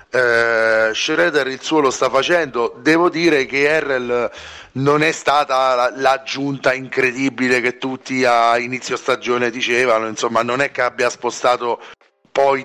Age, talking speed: 30-49, 140 wpm